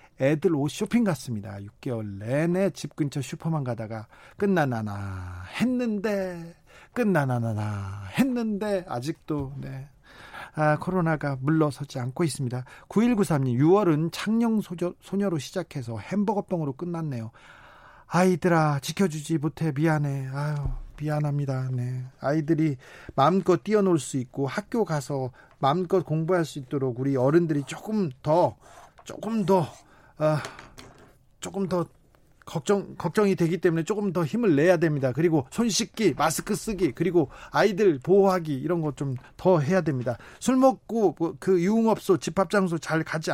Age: 40-59